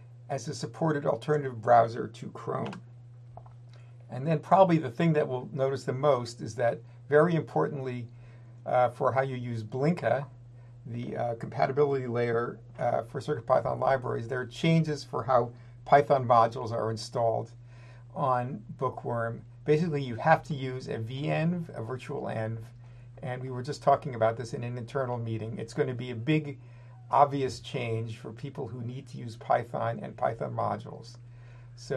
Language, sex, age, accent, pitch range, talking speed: English, male, 50-69, American, 120-140 Hz, 160 wpm